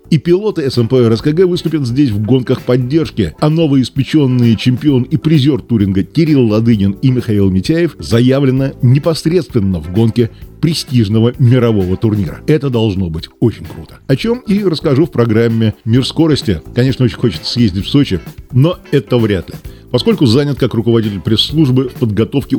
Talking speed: 150 wpm